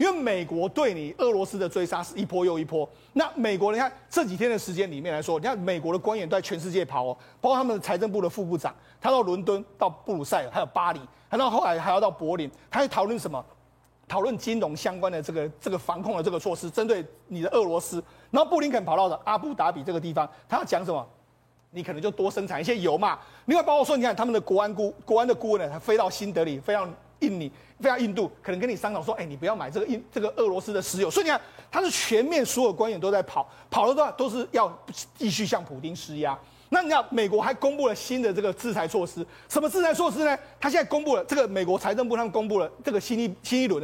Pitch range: 180-255 Hz